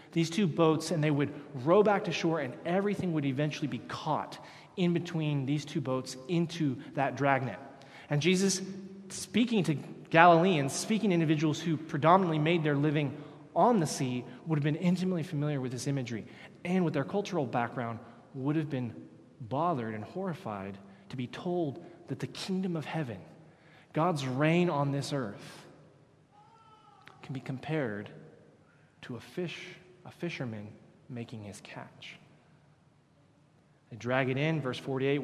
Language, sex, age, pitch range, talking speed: English, male, 20-39, 125-160 Hz, 150 wpm